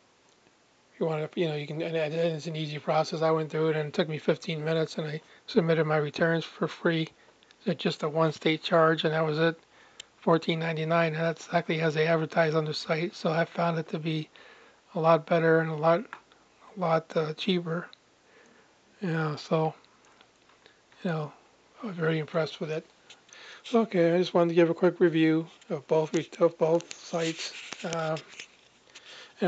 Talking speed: 185 wpm